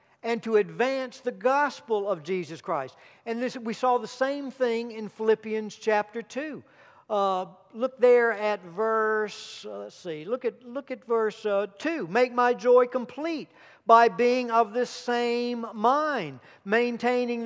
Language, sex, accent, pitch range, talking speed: English, male, American, 205-250 Hz, 150 wpm